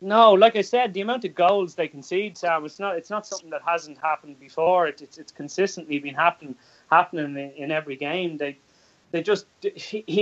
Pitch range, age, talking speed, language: 145-180 Hz, 30-49, 205 wpm, English